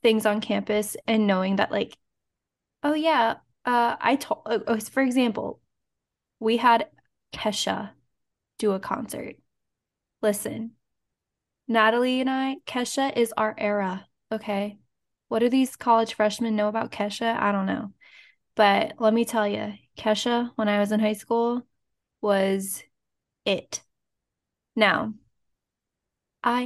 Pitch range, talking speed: 215-250 Hz, 125 wpm